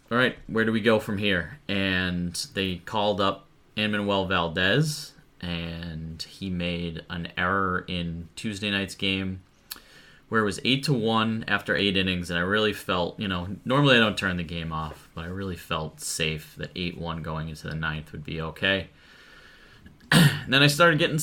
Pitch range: 85-105 Hz